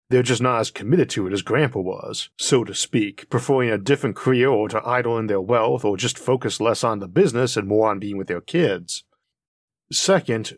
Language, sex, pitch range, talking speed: English, male, 105-135 Hz, 215 wpm